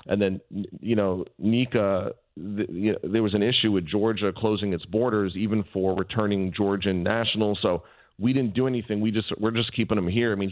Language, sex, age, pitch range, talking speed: English, male, 40-59, 95-115 Hz, 215 wpm